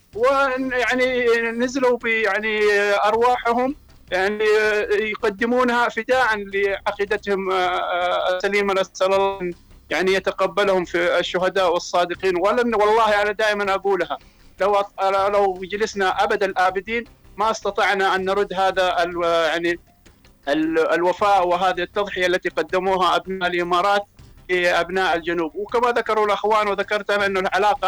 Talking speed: 110 wpm